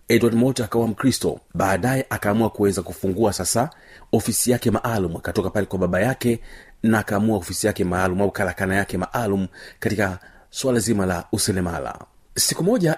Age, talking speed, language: 40-59, 150 wpm, Swahili